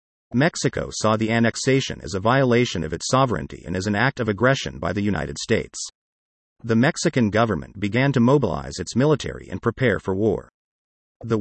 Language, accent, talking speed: English, American, 175 wpm